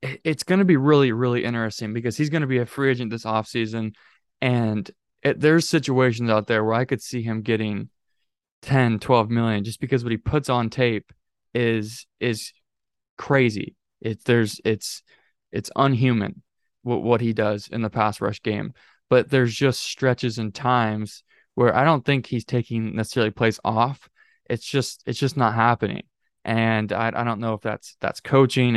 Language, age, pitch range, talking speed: English, 20-39, 110-130 Hz, 175 wpm